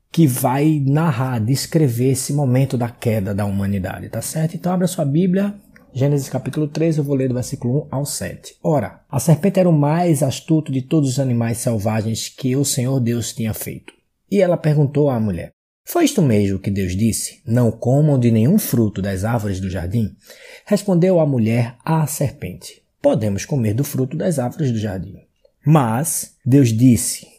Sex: male